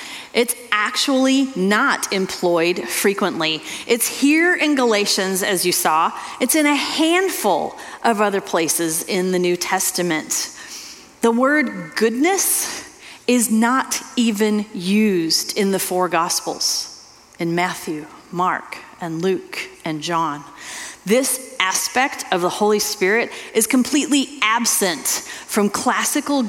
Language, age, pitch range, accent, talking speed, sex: English, 30-49, 190-255 Hz, American, 120 wpm, female